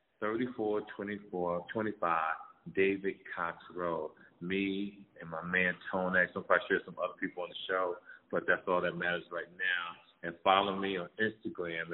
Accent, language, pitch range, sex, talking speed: American, English, 90-105 Hz, male, 185 wpm